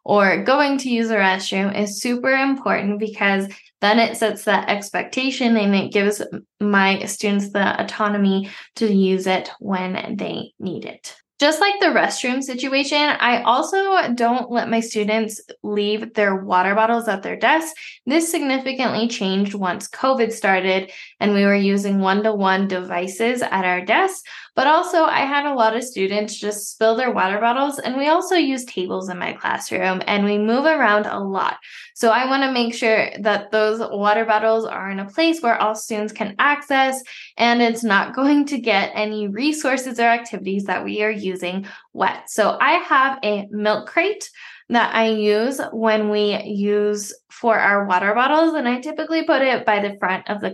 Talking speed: 180 wpm